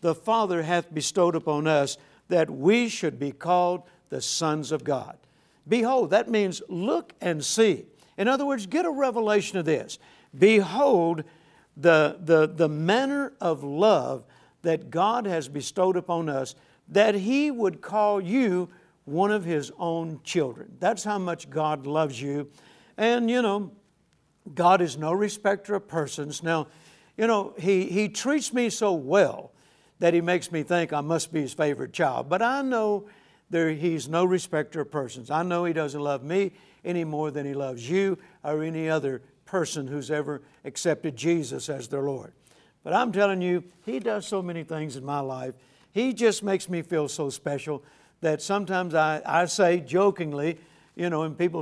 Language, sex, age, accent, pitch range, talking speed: English, male, 60-79, American, 150-195 Hz, 170 wpm